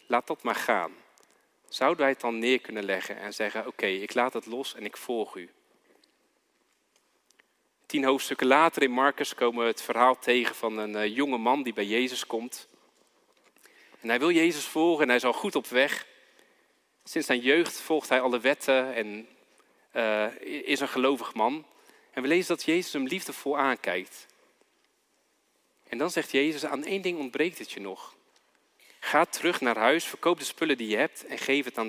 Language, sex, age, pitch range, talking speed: Dutch, male, 40-59, 115-140 Hz, 185 wpm